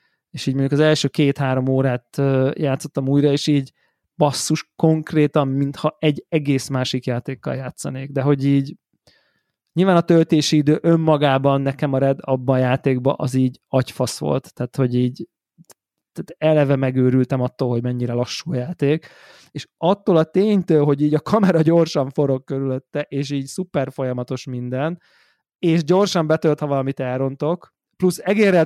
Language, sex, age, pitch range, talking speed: Hungarian, male, 20-39, 130-155 Hz, 145 wpm